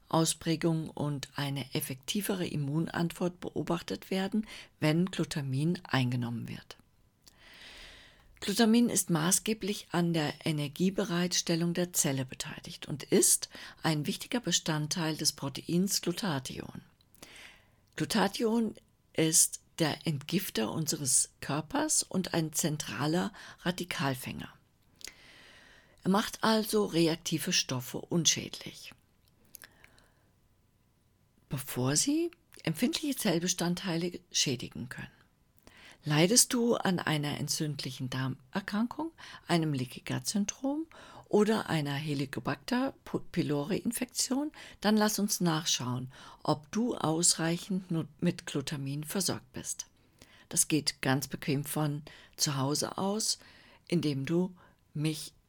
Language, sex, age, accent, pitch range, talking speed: German, female, 50-69, German, 140-190 Hz, 90 wpm